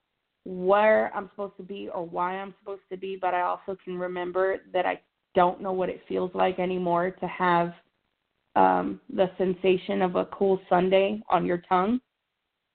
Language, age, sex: English, 20-39, female